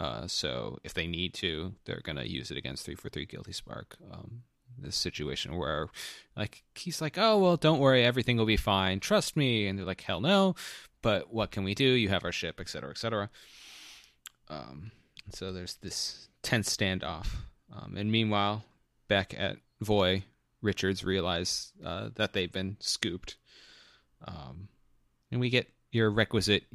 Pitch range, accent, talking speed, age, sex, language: 90-115 Hz, American, 170 wpm, 30-49, male, English